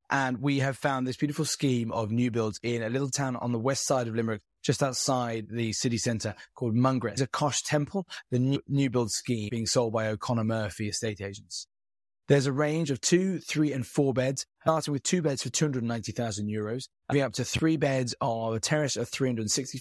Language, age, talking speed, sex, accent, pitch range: English, 20-39, 225 wpm, male, British, 110-135 Hz